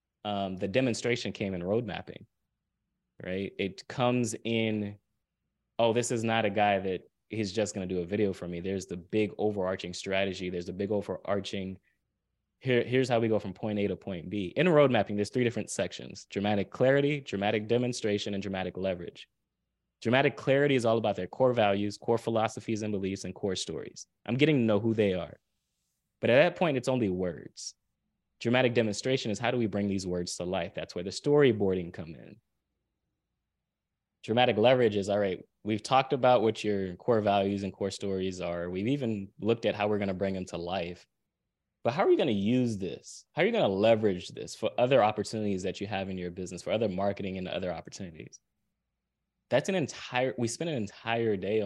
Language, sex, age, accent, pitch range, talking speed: English, male, 20-39, American, 95-115 Hz, 200 wpm